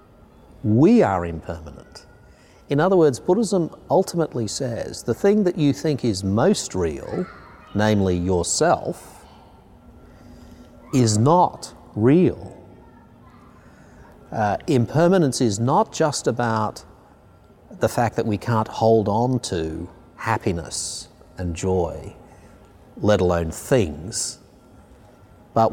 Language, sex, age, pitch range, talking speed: English, male, 50-69, 95-120 Hz, 100 wpm